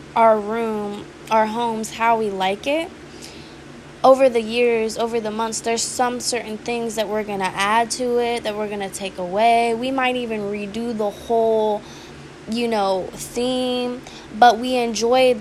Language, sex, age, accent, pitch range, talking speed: English, female, 10-29, American, 210-240 Hz, 170 wpm